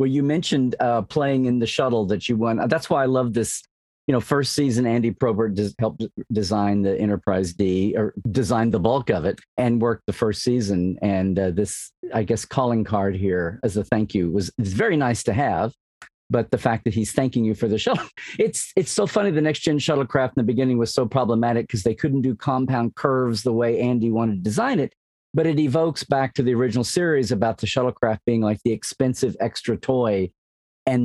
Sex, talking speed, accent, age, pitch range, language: male, 215 wpm, American, 40-59, 110-130 Hz, English